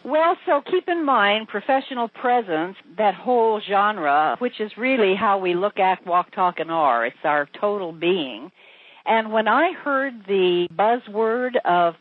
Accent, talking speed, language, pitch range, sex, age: American, 160 wpm, English, 180-225 Hz, female, 60-79